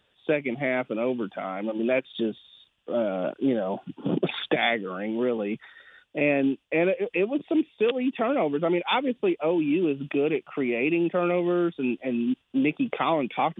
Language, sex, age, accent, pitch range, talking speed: English, male, 30-49, American, 130-170 Hz, 155 wpm